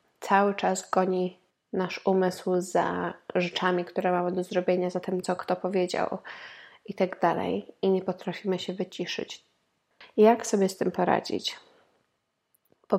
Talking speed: 140 wpm